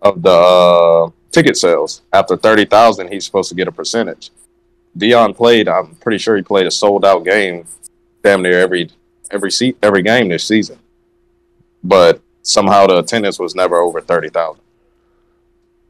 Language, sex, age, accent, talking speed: English, male, 20-39, American, 160 wpm